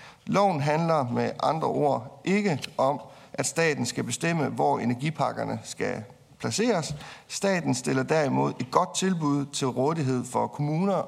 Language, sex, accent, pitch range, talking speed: Danish, male, native, 125-160 Hz, 135 wpm